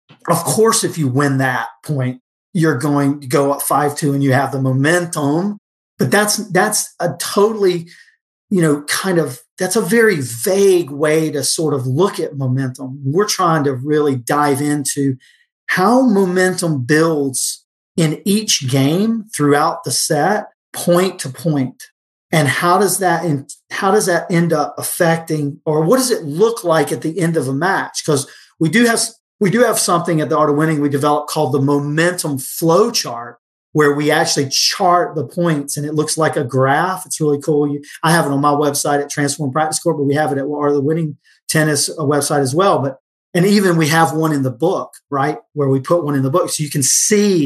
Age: 40-59